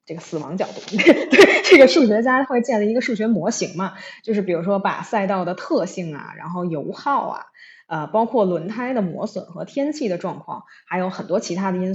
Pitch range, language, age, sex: 180-235 Hz, Chinese, 20-39, female